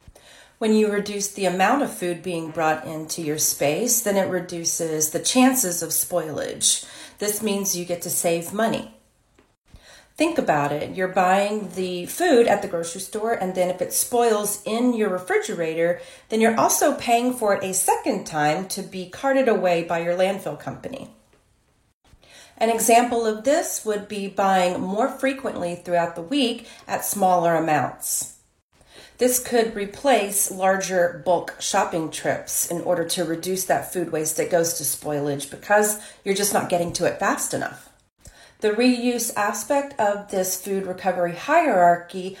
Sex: female